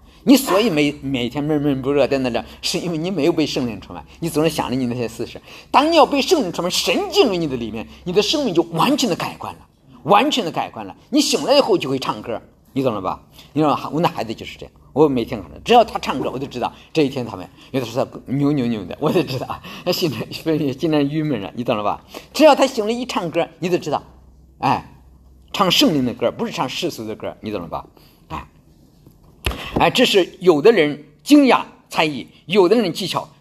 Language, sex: English, male